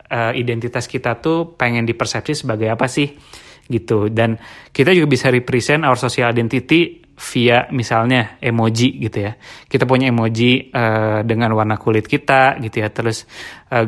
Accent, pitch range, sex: native, 115-135 Hz, male